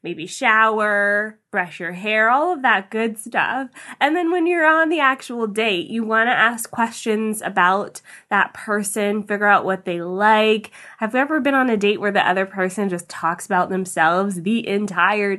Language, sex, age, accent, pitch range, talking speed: English, female, 20-39, American, 205-260 Hz, 185 wpm